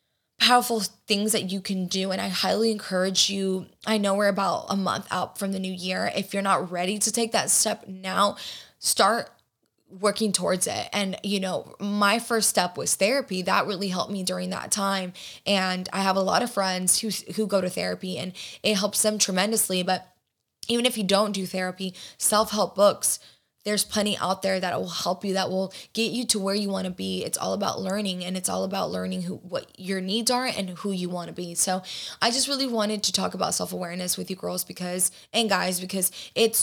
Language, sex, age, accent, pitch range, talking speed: English, female, 20-39, American, 185-205 Hz, 215 wpm